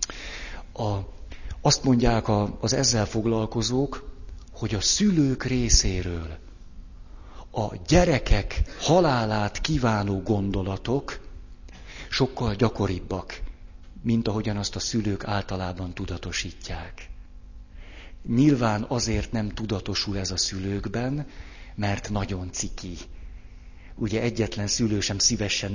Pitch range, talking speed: 85-110 Hz, 90 wpm